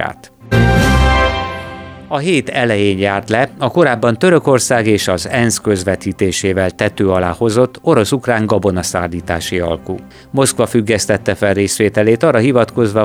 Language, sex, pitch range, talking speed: Hungarian, male, 95-115 Hz, 110 wpm